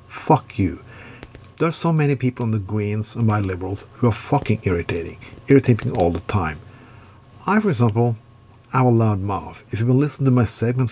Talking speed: 190 wpm